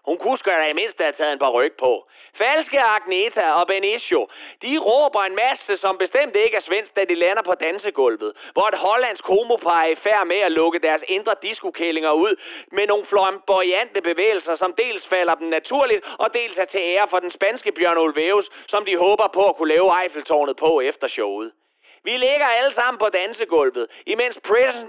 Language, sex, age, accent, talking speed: Danish, male, 30-49, native, 190 wpm